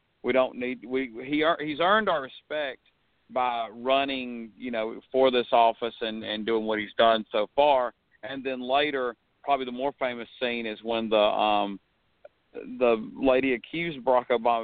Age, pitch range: 50-69, 115-145 Hz